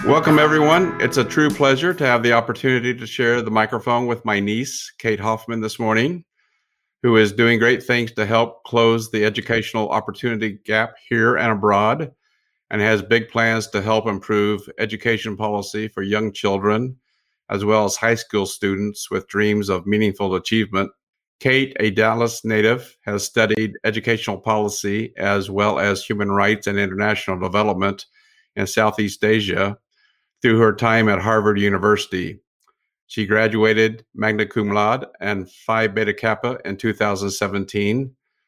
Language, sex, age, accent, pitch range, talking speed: English, male, 50-69, American, 105-115 Hz, 150 wpm